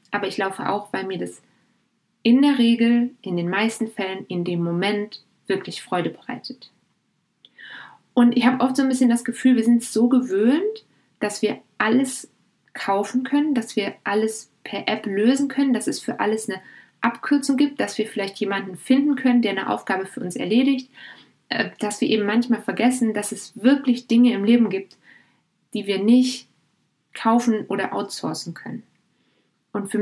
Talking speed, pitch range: 170 wpm, 195-245 Hz